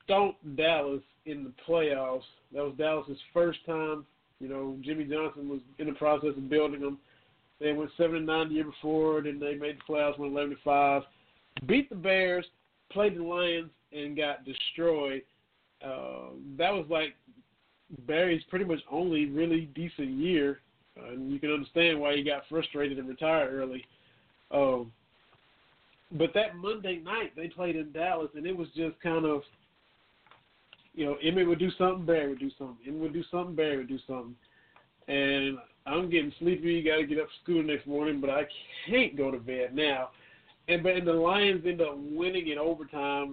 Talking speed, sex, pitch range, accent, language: 180 wpm, male, 140-165 Hz, American, English